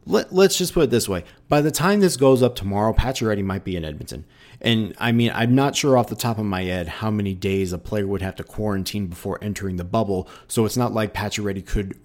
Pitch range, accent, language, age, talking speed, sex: 95-115 Hz, American, English, 30-49, 245 wpm, male